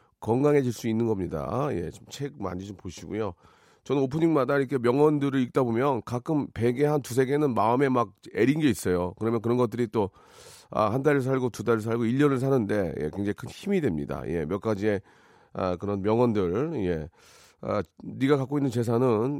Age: 40-59